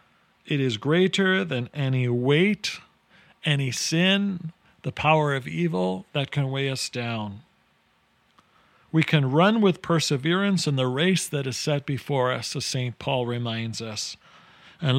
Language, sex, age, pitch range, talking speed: English, male, 50-69, 125-160 Hz, 145 wpm